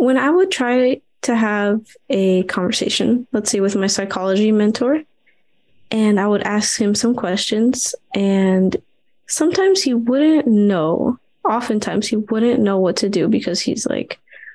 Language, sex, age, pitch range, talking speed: English, female, 20-39, 195-240 Hz, 150 wpm